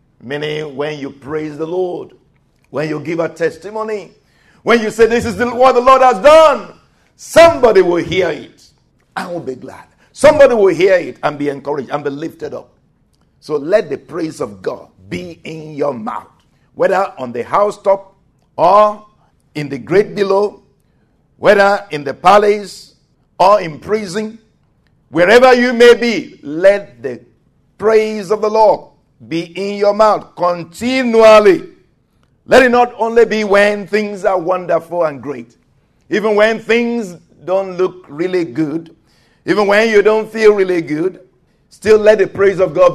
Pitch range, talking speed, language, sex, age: 160-220 Hz, 155 wpm, English, male, 60-79